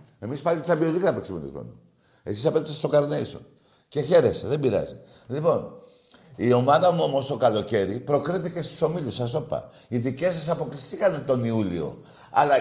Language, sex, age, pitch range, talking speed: Greek, male, 60-79, 125-180 Hz, 170 wpm